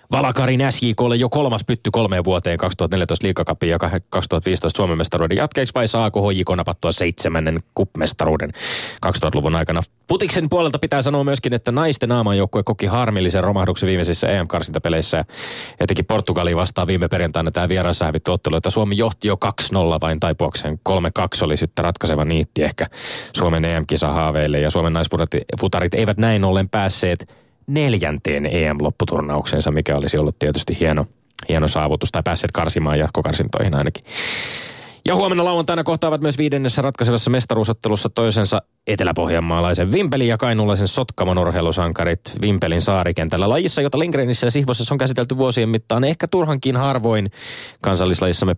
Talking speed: 135 wpm